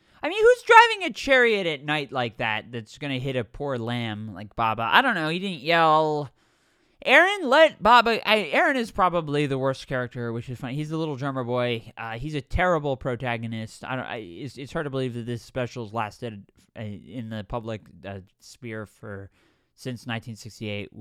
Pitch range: 115-155 Hz